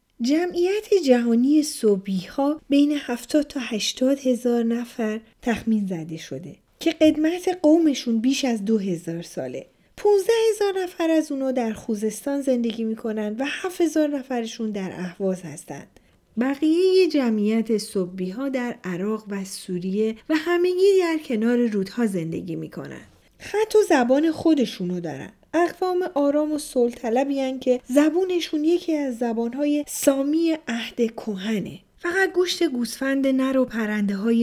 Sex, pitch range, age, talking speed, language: female, 205-295 Hz, 40-59, 130 wpm, Persian